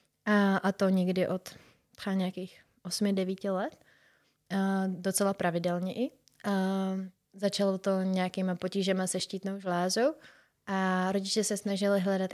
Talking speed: 120 wpm